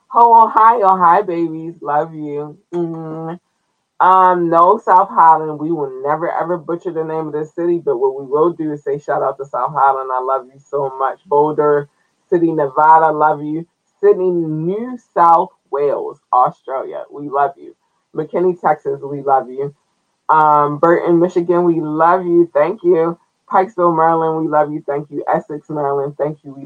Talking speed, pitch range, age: 170 wpm, 155-205 Hz, 20-39